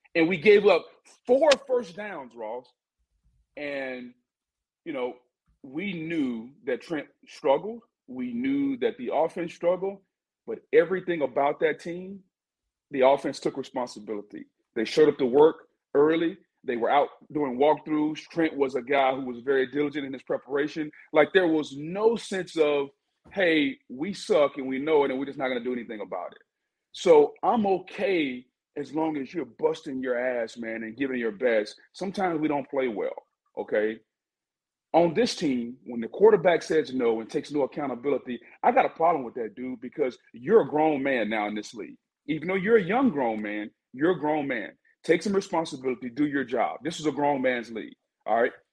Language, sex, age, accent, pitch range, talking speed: English, male, 40-59, American, 130-220 Hz, 185 wpm